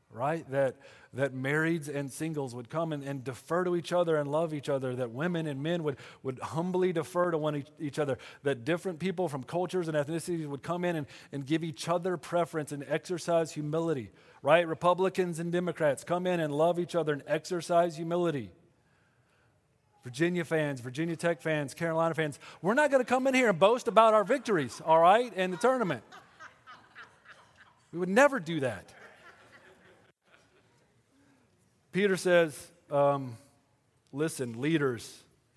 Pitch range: 120-165 Hz